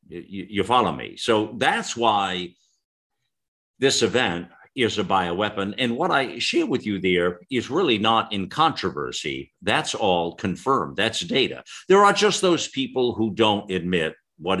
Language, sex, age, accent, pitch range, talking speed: English, male, 50-69, American, 90-115 Hz, 150 wpm